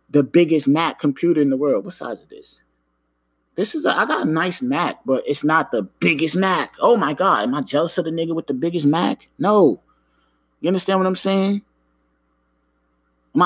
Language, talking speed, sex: English, 190 wpm, male